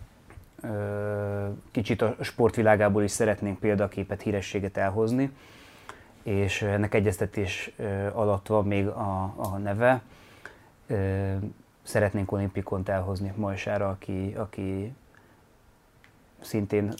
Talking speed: 85 wpm